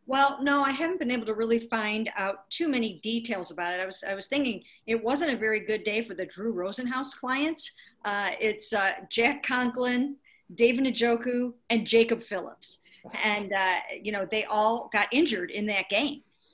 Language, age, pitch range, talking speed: English, 50-69, 190-230 Hz, 190 wpm